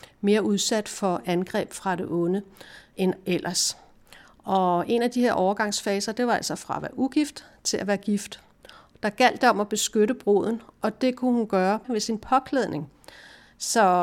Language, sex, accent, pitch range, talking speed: Danish, female, native, 190-235 Hz, 180 wpm